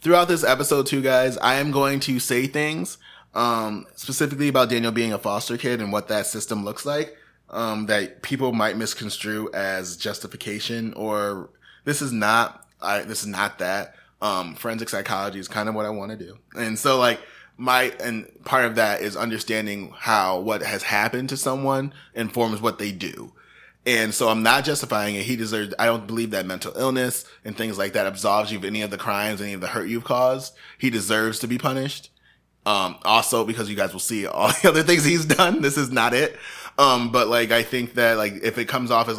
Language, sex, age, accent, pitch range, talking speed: English, male, 20-39, American, 105-130 Hz, 210 wpm